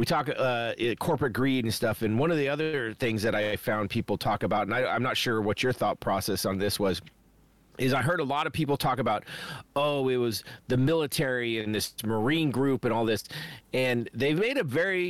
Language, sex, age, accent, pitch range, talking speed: English, male, 40-59, American, 115-155 Hz, 225 wpm